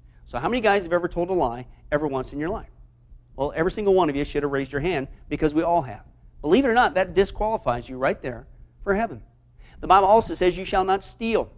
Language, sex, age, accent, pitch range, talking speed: English, male, 40-59, American, 130-190 Hz, 250 wpm